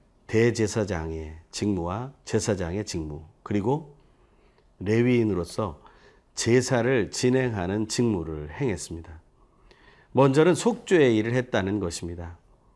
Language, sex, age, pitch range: Korean, male, 40-59, 90-135 Hz